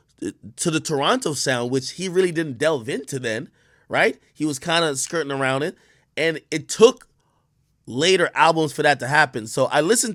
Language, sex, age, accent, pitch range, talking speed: English, male, 20-39, American, 125-155 Hz, 185 wpm